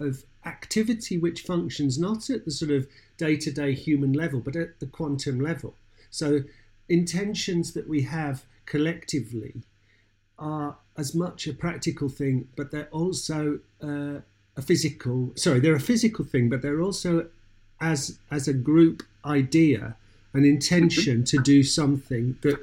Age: 50-69